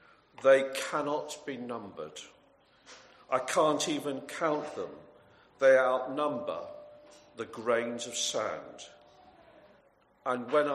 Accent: British